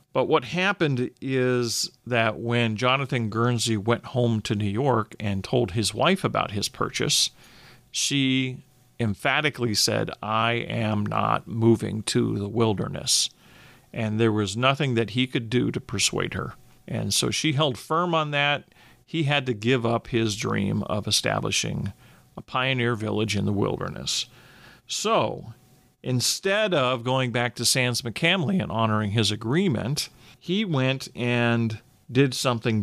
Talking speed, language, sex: 145 wpm, English, male